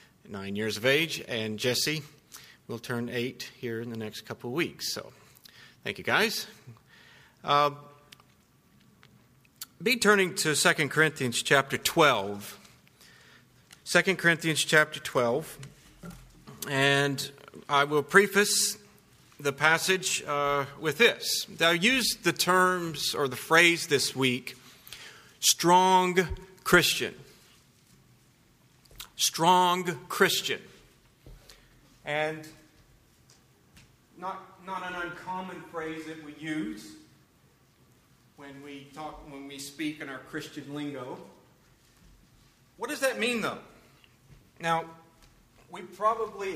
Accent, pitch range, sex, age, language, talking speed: American, 140-185 Hz, male, 40-59, English, 105 wpm